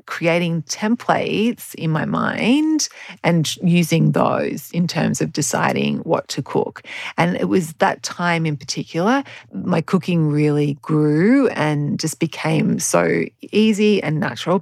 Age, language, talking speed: 30-49, English, 135 wpm